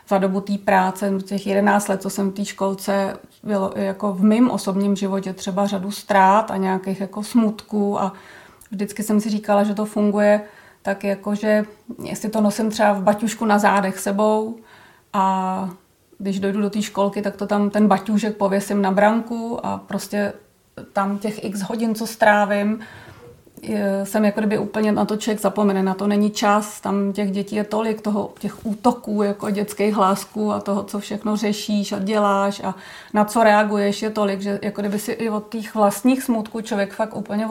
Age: 30-49